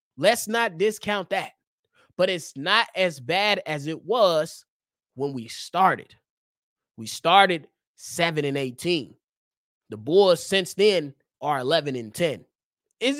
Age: 20-39